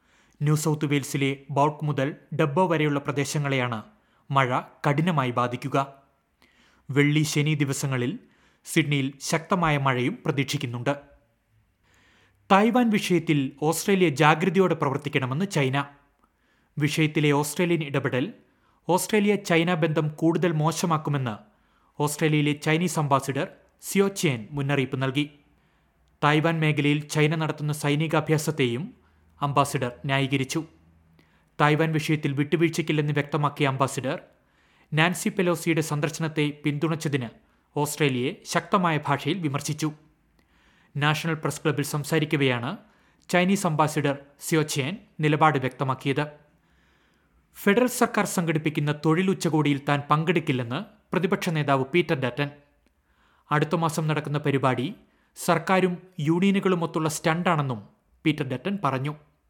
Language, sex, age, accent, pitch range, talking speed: Malayalam, male, 30-49, native, 140-165 Hz, 90 wpm